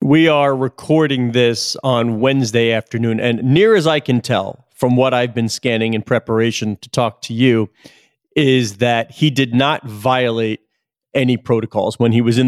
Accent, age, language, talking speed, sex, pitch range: American, 40-59, English, 175 wpm, male, 125-150 Hz